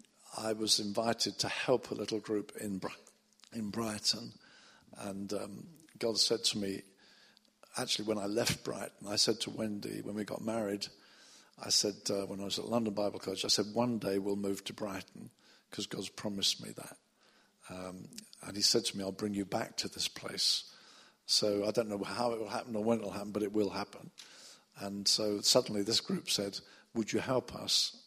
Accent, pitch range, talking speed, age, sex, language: British, 100-120 Hz, 200 wpm, 50-69, male, English